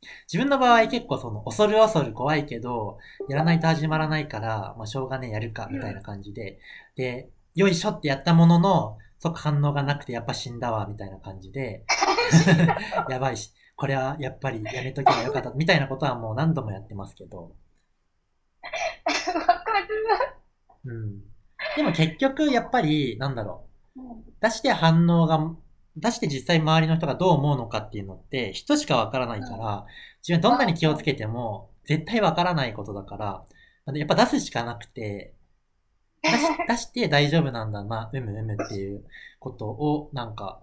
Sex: male